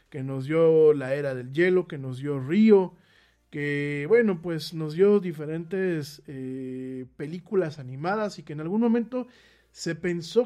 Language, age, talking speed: Spanish, 40-59, 155 wpm